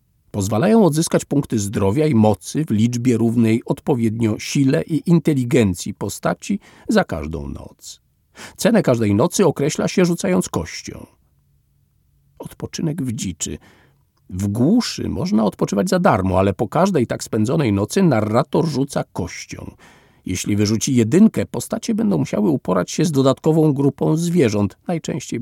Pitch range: 105-170 Hz